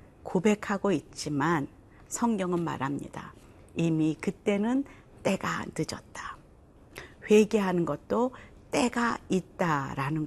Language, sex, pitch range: Korean, female, 155-220 Hz